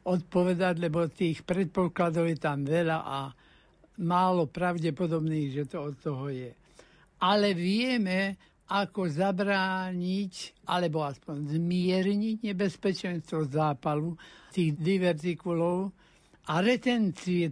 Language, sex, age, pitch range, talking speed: Slovak, male, 60-79, 165-195 Hz, 95 wpm